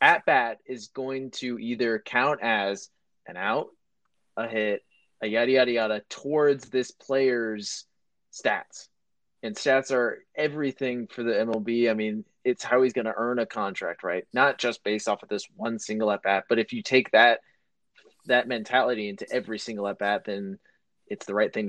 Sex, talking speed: male, 170 wpm